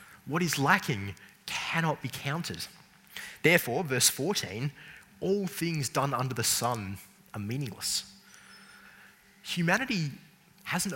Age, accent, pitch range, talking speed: 20-39, Australian, 115-155 Hz, 105 wpm